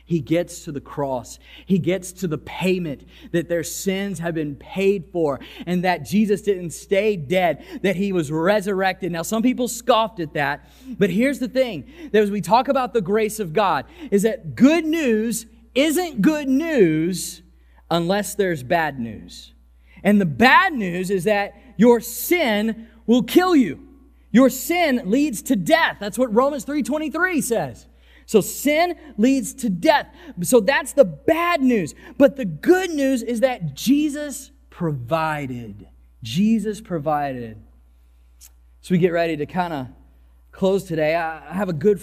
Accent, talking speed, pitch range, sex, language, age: American, 160 wpm, 140-225 Hz, male, English, 30-49